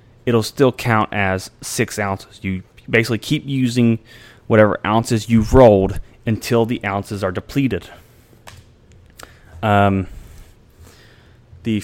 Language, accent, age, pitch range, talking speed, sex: English, American, 20-39, 105-125 Hz, 105 wpm, male